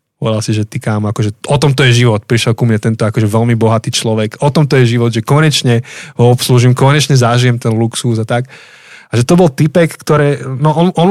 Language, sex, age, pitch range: Slovak, male, 20-39, 120-145 Hz